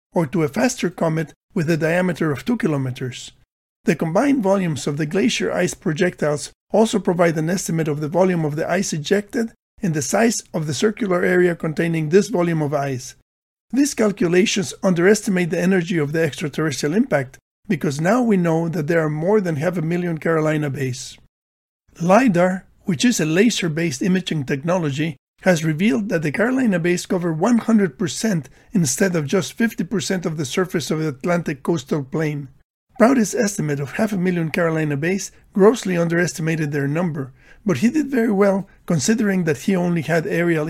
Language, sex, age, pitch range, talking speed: English, male, 50-69, 155-195 Hz, 170 wpm